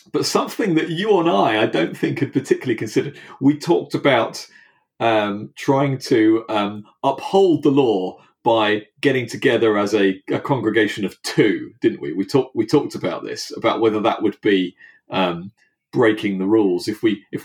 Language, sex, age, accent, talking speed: English, male, 40-59, British, 175 wpm